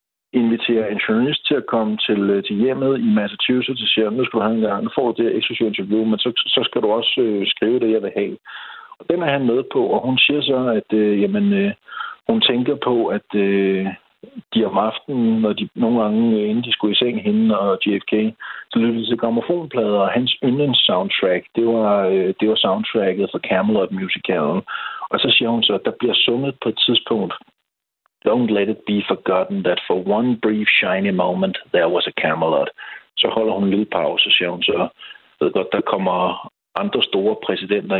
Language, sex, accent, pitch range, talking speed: Danish, male, native, 105-130 Hz, 205 wpm